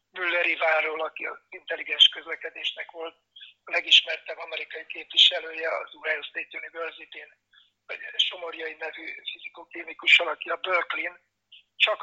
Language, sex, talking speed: Hungarian, male, 110 wpm